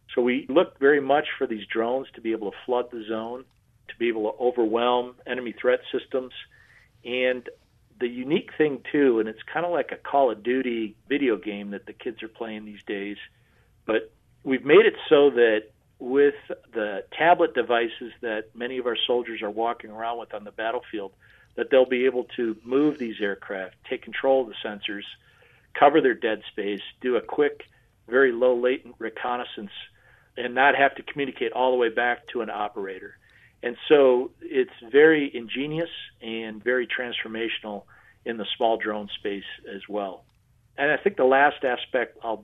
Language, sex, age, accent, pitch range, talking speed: English, male, 50-69, American, 110-130 Hz, 175 wpm